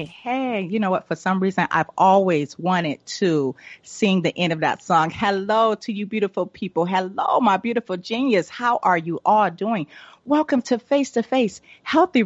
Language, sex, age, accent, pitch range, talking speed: English, female, 40-59, American, 180-245 Hz, 180 wpm